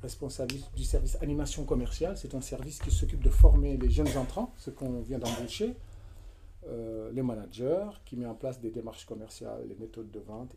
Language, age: French, 40-59